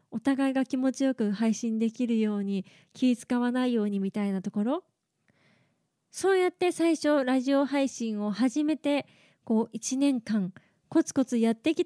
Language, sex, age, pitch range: Japanese, female, 20-39, 225-285 Hz